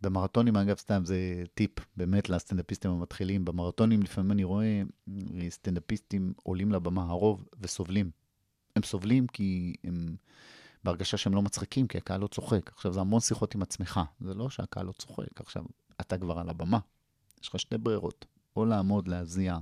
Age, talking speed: 30-49, 160 wpm